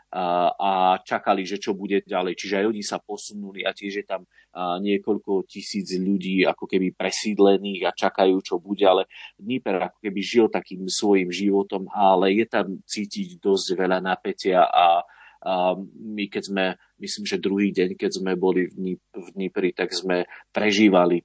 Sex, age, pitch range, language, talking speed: male, 30-49, 90-100 Hz, Slovak, 165 wpm